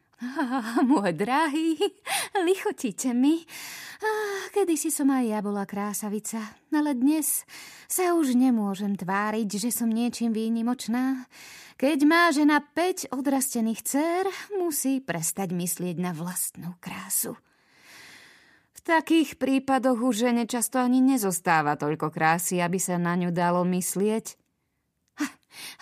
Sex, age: female, 20-39